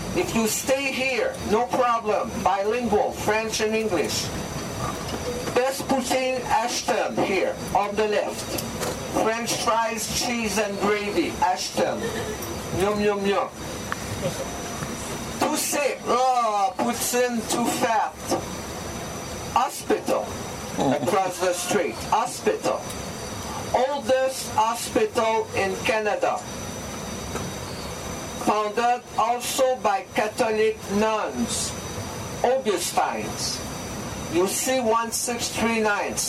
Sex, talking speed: male, 85 wpm